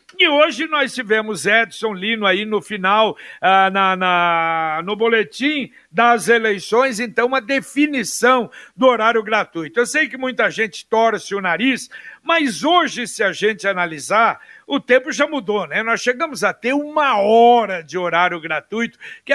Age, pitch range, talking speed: 60-79, 210-260 Hz, 150 wpm